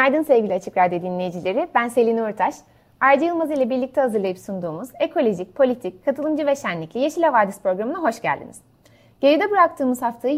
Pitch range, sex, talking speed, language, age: 190-270 Hz, female, 155 wpm, Turkish, 30-49